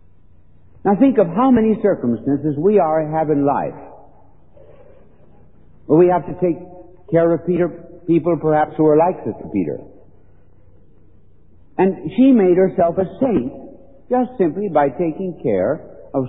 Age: 60-79